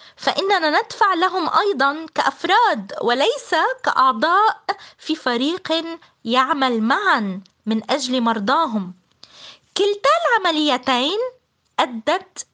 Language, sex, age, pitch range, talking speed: Arabic, female, 20-39, 230-370 Hz, 80 wpm